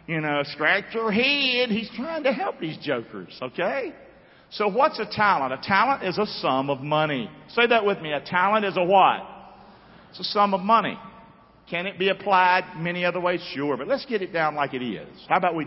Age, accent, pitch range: 50-69, American, 160-225 Hz